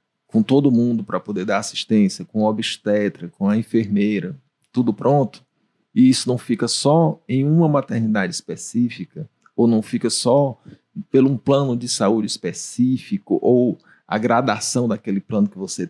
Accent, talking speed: Brazilian, 150 wpm